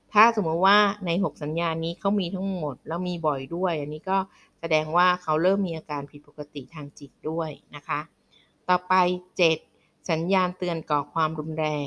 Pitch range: 150-185 Hz